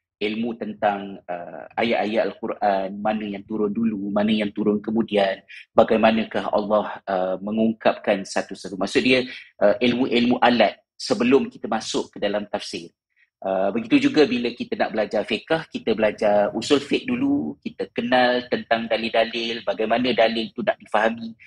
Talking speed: 140 wpm